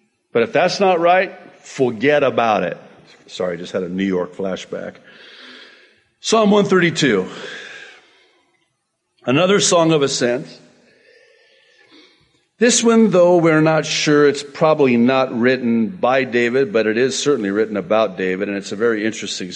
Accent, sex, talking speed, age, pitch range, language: American, male, 140 wpm, 50-69, 140-215 Hz, English